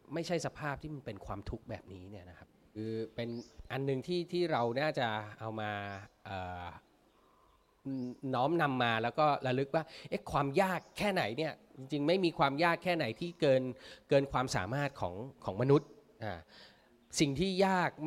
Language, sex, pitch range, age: Thai, male, 110-155 Hz, 20-39